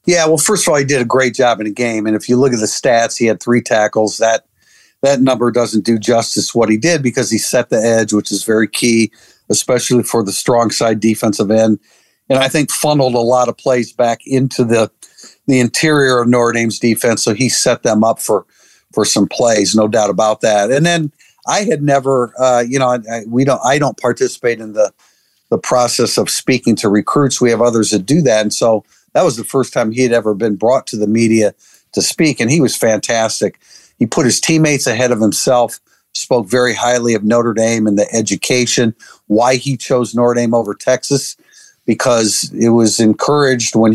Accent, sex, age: American, male, 50-69